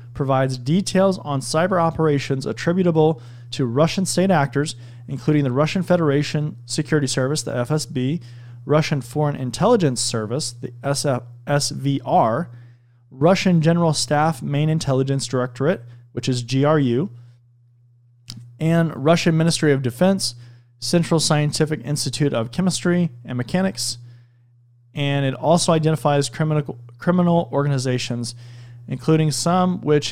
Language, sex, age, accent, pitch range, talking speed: English, male, 30-49, American, 120-155 Hz, 110 wpm